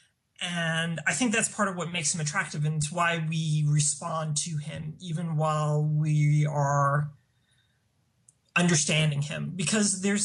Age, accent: 30-49, American